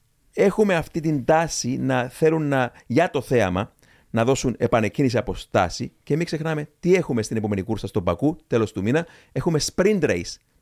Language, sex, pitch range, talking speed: Greek, male, 115-160 Hz, 175 wpm